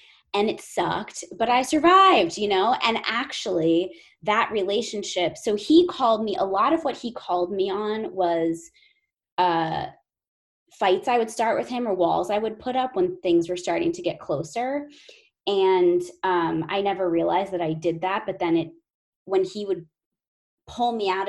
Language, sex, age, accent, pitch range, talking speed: English, female, 20-39, American, 170-225 Hz, 180 wpm